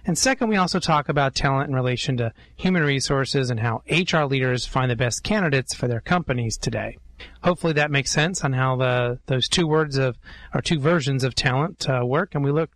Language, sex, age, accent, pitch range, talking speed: English, male, 30-49, American, 125-155 Hz, 210 wpm